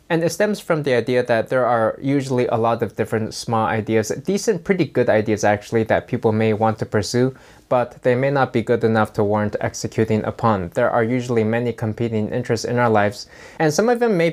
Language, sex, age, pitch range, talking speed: English, male, 20-39, 110-125 Hz, 220 wpm